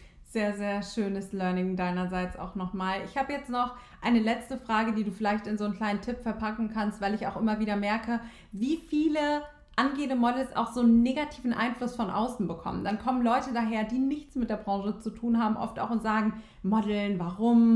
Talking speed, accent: 205 wpm, German